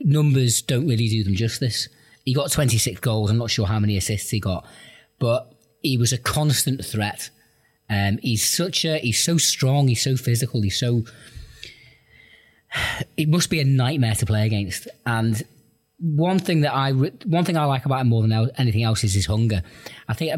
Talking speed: 185 wpm